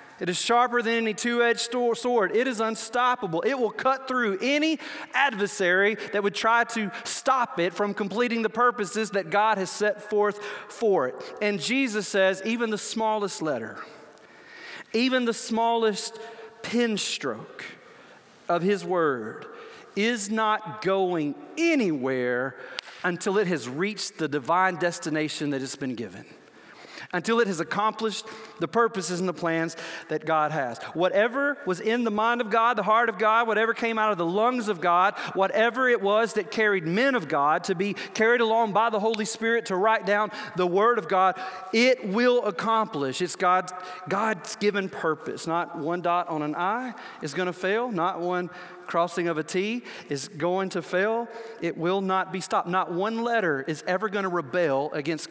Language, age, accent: English, 40-59, American